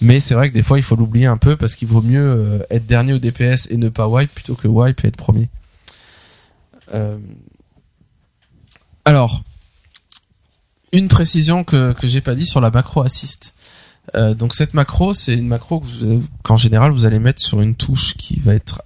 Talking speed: 195 wpm